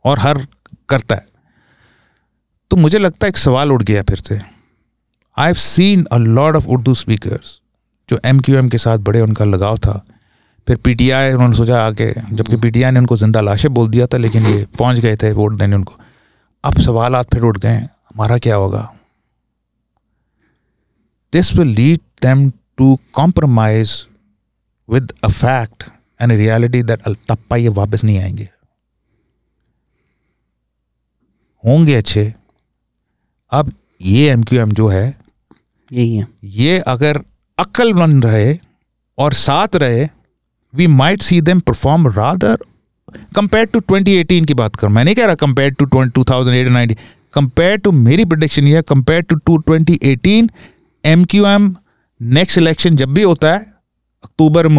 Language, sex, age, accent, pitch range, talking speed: English, male, 40-59, Indian, 110-150 Hz, 125 wpm